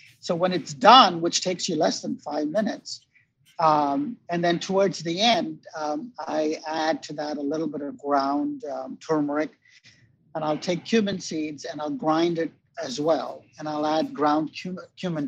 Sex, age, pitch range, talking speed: male, 50-69, 140-175 Hz, 175 wpm